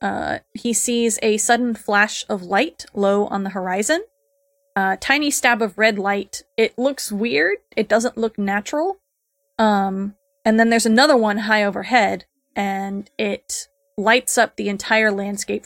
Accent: American